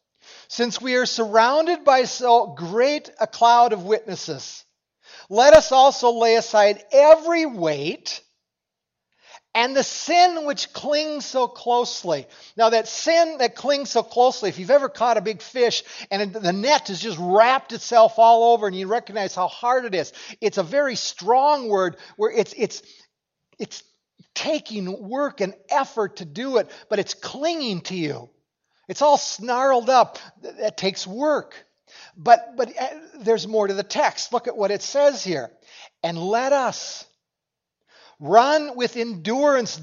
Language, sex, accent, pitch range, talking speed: English, male, American, 200-265 Hz, 150 wpm